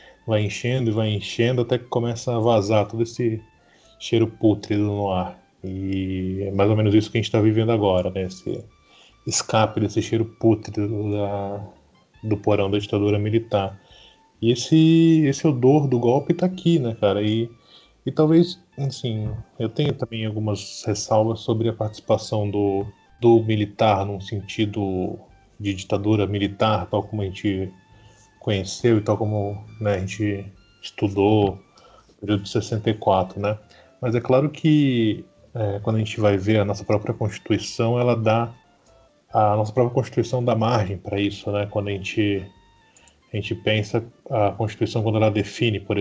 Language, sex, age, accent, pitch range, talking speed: Portuguese, male, 20-39, Brazilian, 100-115 Hz, 160 wpm